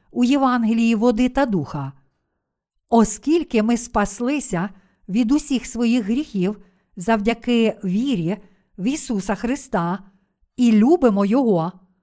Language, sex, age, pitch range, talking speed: Ukrainian, female, 50-69, 190-250 Hz, 100 wpm